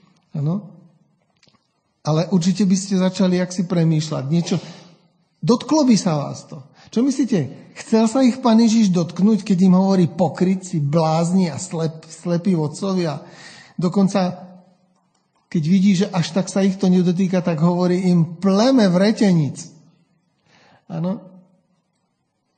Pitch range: 175-215 Hz